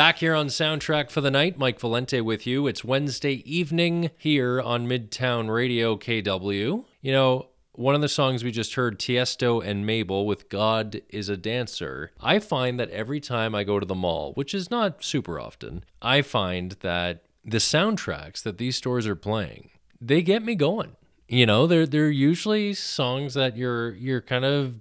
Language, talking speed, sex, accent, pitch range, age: English, 185 wpm, male, American, 100-135 Hz, 20-39